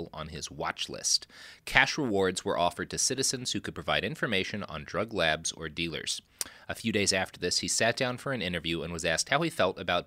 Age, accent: 30-49, American